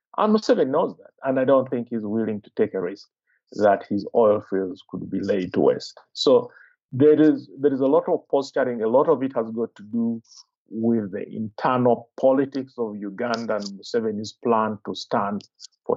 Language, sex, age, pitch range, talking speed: English, male, 50-69, 110-140 Hz, 195 wpm